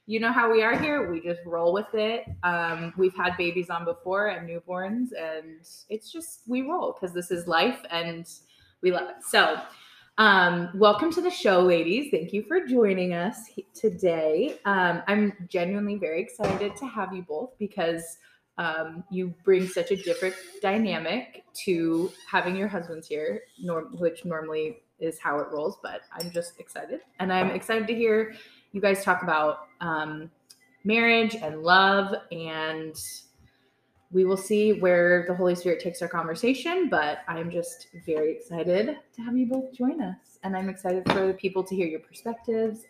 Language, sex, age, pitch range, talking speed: English, female, 20-39, 170-210 Hz, 170 wpm